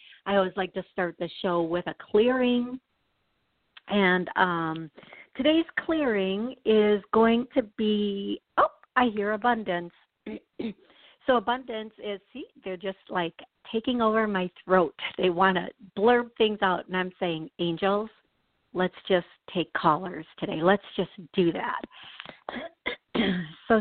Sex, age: female, 50-69